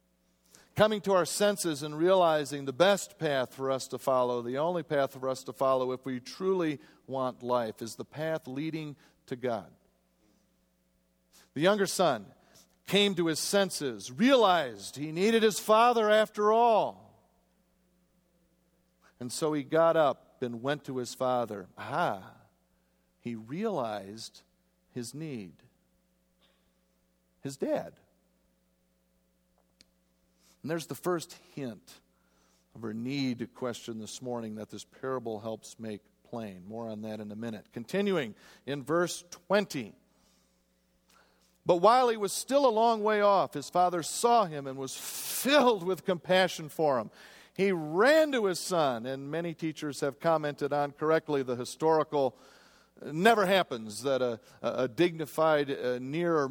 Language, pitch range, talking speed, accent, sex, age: English, 115-175 Hz, 140 wpm, American, male, 50-69